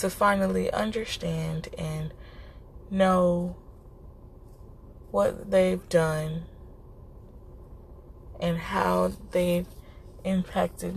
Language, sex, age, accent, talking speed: English, female, 20-39, American, 65 wpm